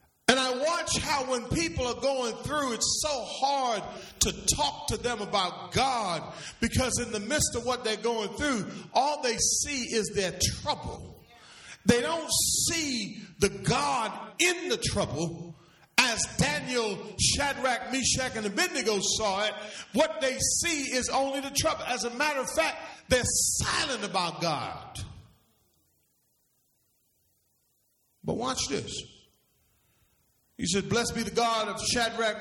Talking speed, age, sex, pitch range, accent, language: 135 wpm, 40-59, male, 200-270 Hz, American, English